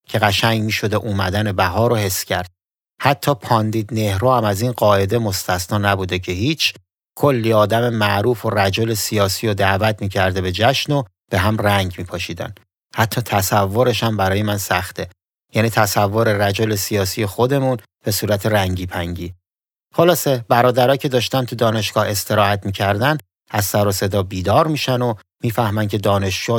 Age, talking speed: 30-49, 160 wpm